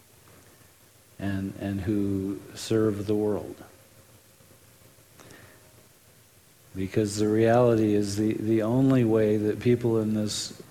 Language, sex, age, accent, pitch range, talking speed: English, male, 50-69, American, 110-125 Hz, 100 wpm